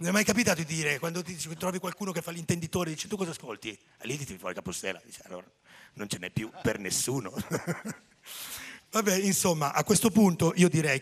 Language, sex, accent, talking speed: Italian, male, native, 205 wpm